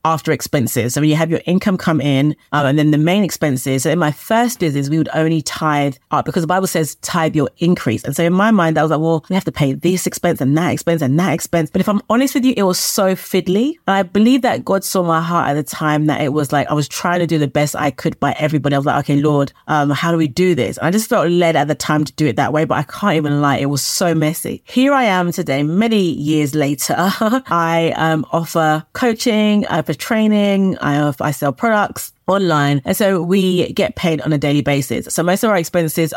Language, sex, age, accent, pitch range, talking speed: English, female, 30-49, British, 150-185 Hz, 255 wpm